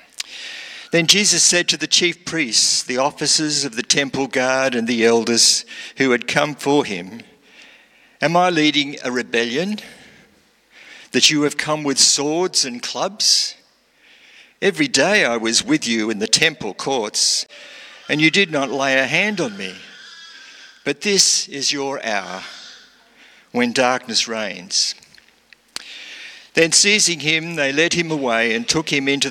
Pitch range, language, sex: 125-170 Hz, English, male